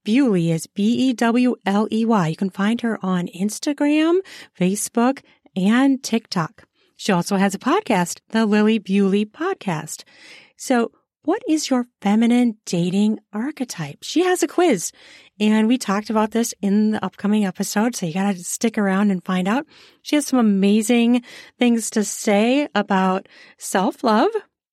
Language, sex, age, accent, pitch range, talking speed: English, female, 40-59, American, 195-245 Hz, 145 wpm